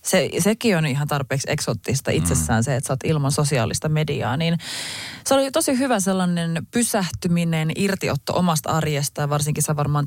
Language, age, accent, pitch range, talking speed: Finnish, 20-39, native, 140-180 Hz, 160 wpm